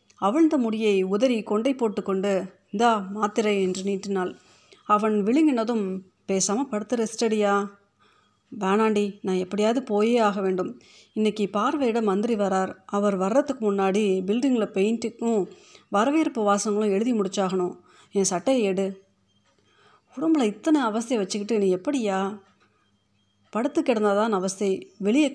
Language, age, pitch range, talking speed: Tamil, 30-49, 195-230 Hz, 110 wpm